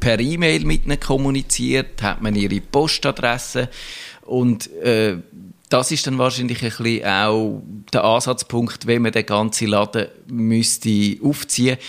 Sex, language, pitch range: male, German, 105-125 Hz